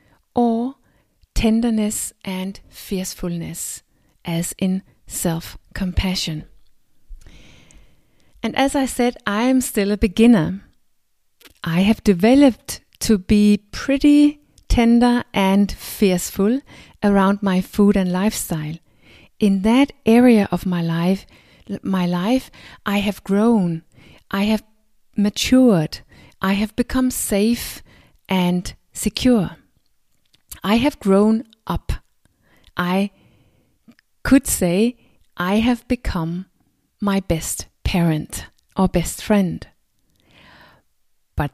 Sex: female